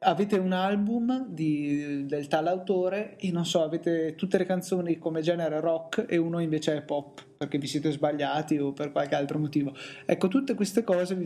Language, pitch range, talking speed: Italian, 145-185 Hz, 190 wpm